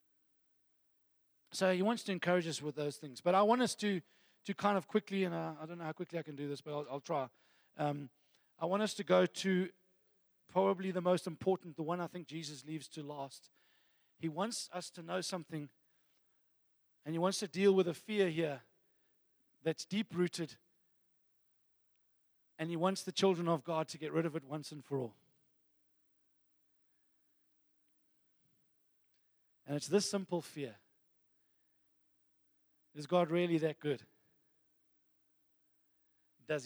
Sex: male